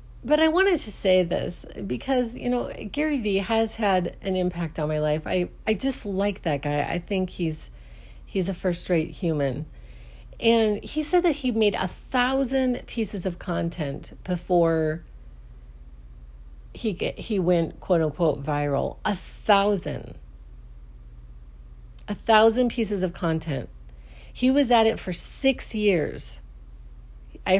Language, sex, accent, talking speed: English, female, American, 135 wpm